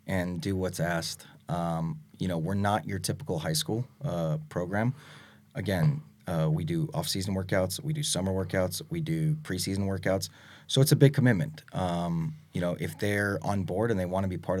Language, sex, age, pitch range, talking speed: English, male, 30-49, 90-145 Hz, 195 wpm